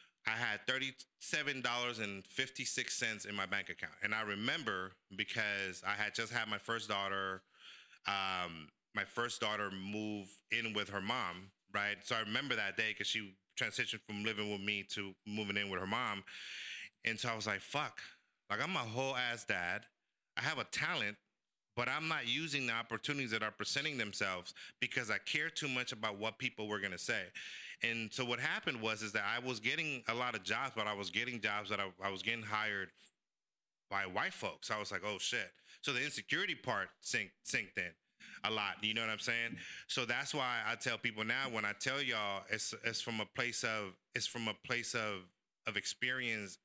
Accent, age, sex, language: American, 30-49, male, English